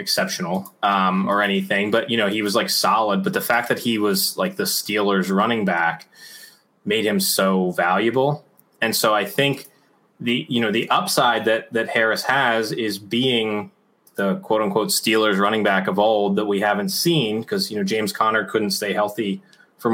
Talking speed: 185 wpm